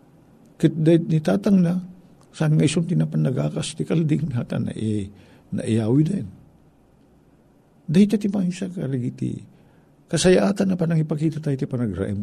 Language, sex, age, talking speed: Filipino, male, 60-79, 130 wpm